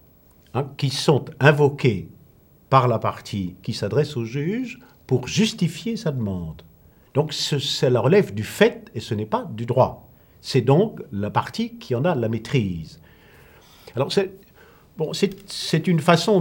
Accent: French